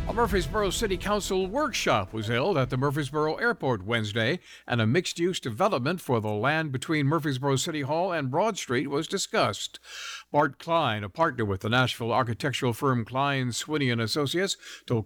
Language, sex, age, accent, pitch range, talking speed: English, male, 60-79, American, 120-165 Hz, 165 wpm